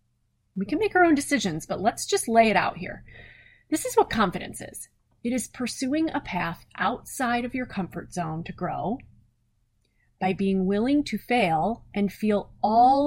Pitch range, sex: 160-220 Hz, female